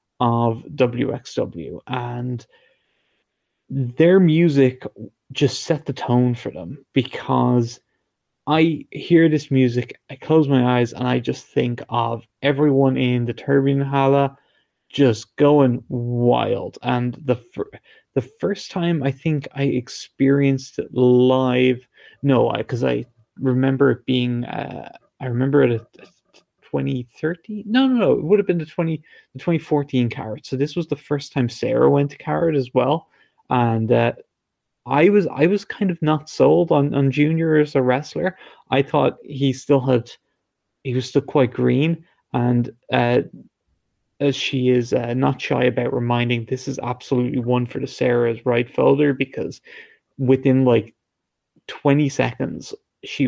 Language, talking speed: English, 150 wpm